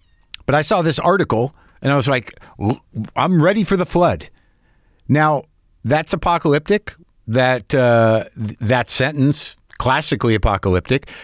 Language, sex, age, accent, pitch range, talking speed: English, male, 50-69, American, 110-160 Hz, 130 wpm